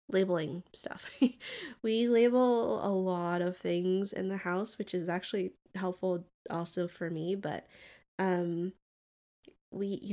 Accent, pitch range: American, 175-205 Hz